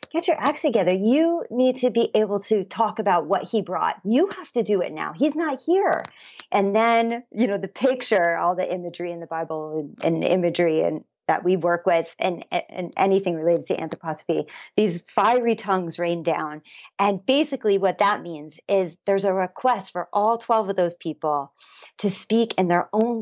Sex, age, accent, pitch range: female, 40-59, American, 170-220 Hz